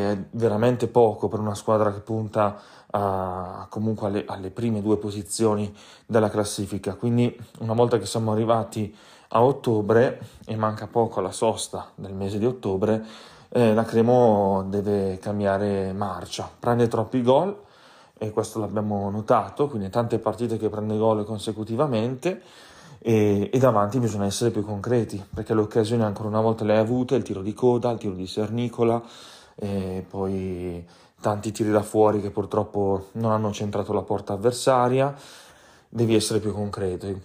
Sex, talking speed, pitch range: male, 150 wpm, 100-115 Hz